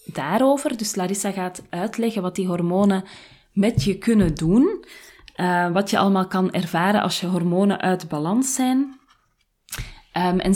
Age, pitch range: 20-39, 175-215 Hz